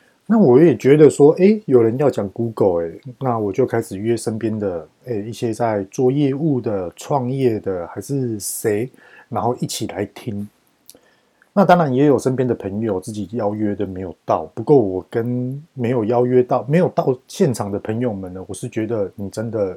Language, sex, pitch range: Chinese, male, 105-145 Hz